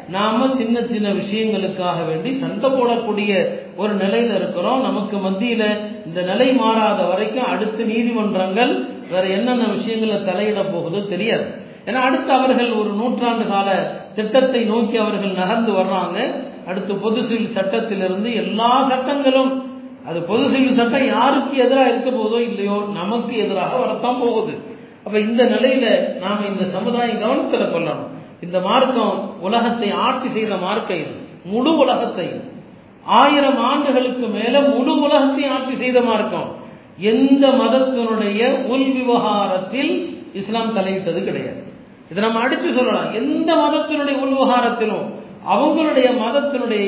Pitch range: 200-255 Hz